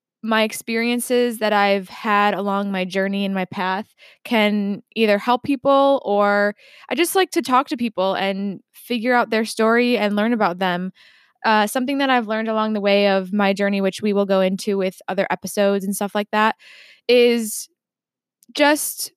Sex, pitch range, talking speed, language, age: female, 200-250 Hz, 180 wpm, English, 20-39